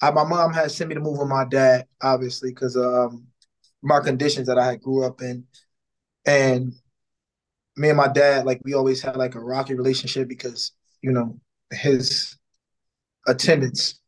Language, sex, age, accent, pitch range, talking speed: English, male, 20-39, American, 125-140 Hz, 170 wpm